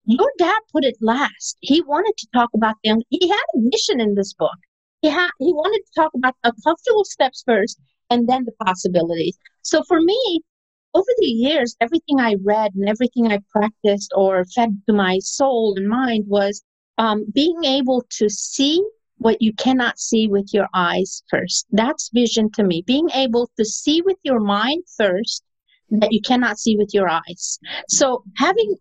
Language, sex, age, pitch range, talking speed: English, female, 50-69, 210-285 Hz, 180 wpm